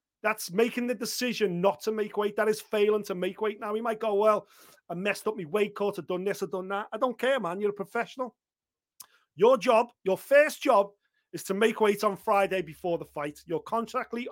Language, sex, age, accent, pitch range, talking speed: English, male, 30-49, British, 195-240 Hz, 230 wpm